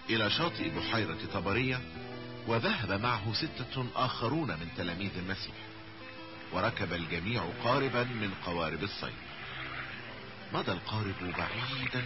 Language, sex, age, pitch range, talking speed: Italian, male, 50-69, 90-125 Hz, 100 wpm